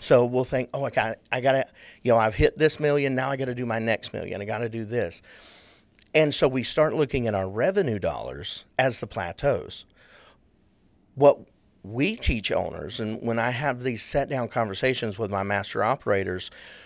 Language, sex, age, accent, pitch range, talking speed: English, male, 50-69, American, 110-140 Hz, 205 wpm